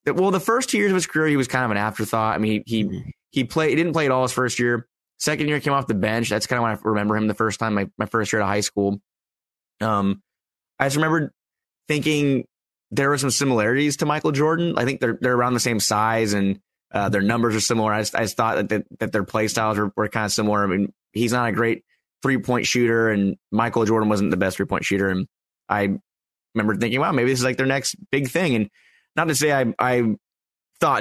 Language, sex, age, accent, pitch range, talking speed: English, male, 20-39, American, 110-130 Hz, 255 wpm